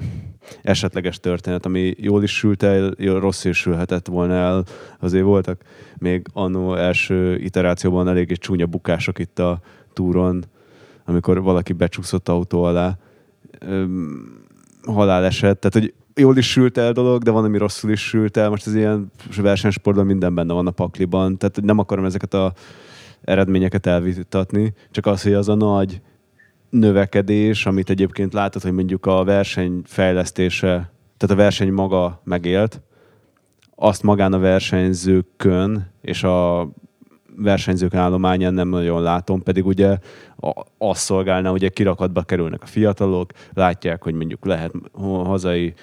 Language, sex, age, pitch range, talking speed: Hungarian, male, 20-39, 90-100 Hz, 135 wpm